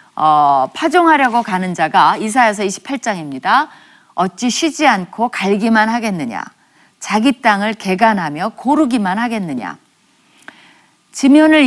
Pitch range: 190-275 Hz